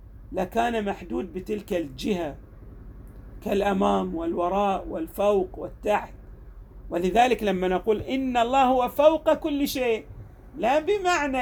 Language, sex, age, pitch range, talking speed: Arabic, male, 40-59, 175-265 Hz, 100 wpm